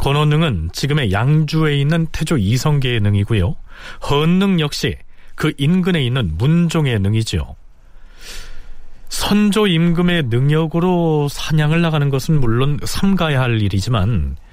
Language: Korean